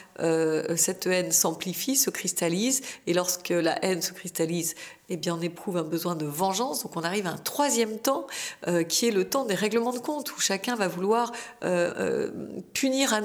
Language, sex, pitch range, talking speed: French, female, 170-210 Hz, 175 wpm